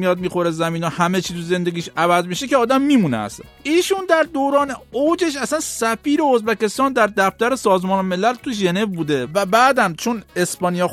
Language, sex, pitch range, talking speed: English, male, 175-250 Hz, 170 wpm